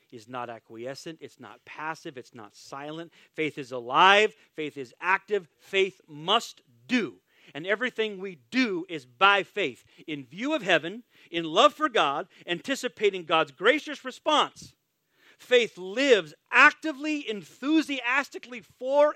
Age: 40-59